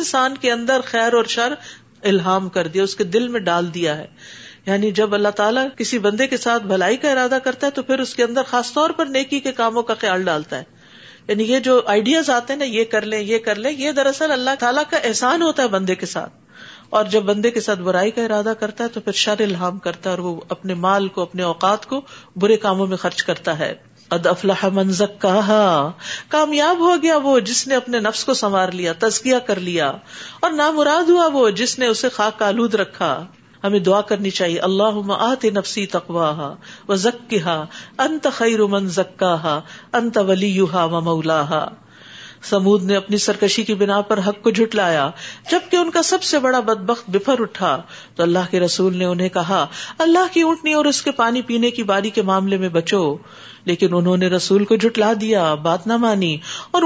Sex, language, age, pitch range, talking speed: female, Urdu, 50-69, 185-250 Hz, 205 wpm